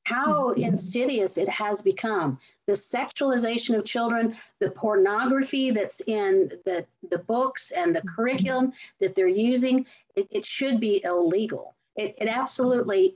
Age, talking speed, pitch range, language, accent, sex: 50-69, 135 wpm, 190-265 Hz, English, American, female